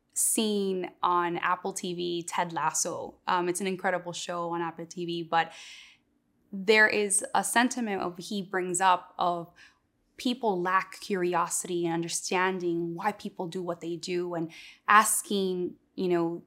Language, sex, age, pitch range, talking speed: English, female, 20-39, 170-200 Hz, 140 wpm